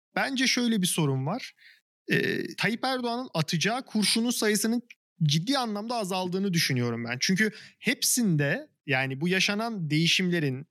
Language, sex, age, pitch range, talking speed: Turkish, male, 40-59, 150-215 Hz, 125 wpm